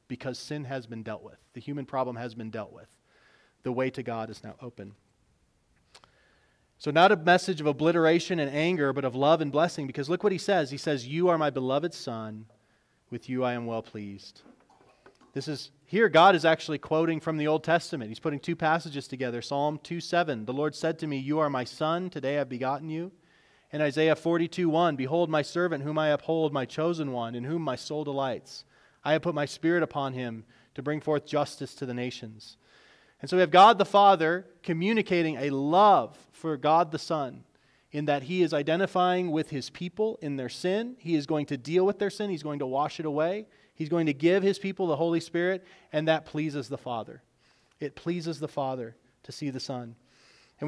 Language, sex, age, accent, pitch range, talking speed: English, male, 30-49, American, 135-170 Hz, 210 wpm